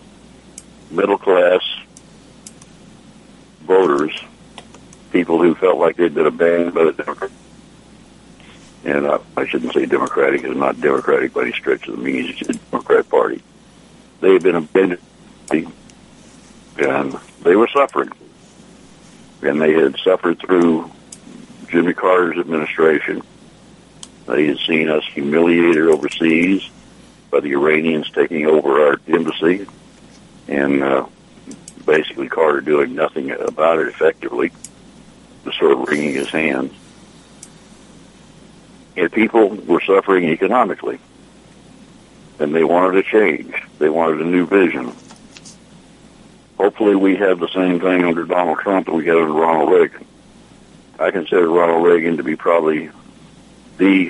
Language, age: English, 60-79